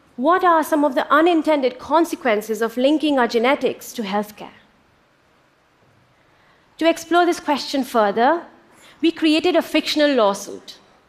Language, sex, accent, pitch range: Chinese, female, Indian, 220-290 Hz